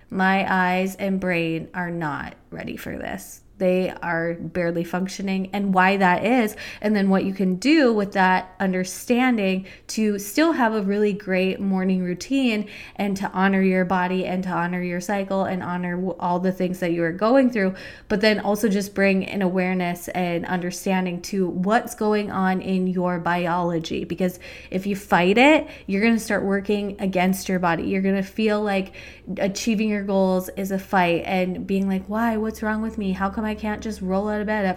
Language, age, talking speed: English, 20-39, 195 wpm